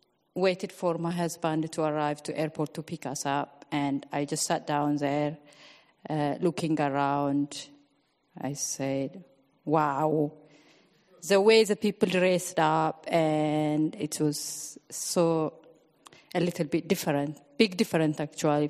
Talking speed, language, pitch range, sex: 130 wpm, English, 150-180 Hz, female